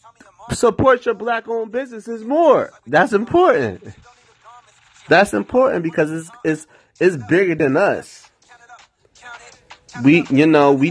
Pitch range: 135-185 Hz